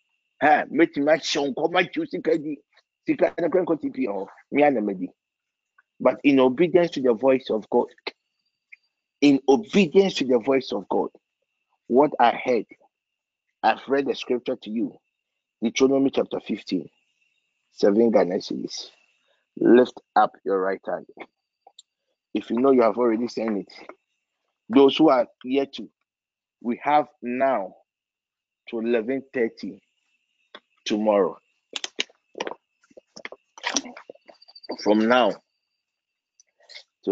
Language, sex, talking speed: English, male, 90 wpm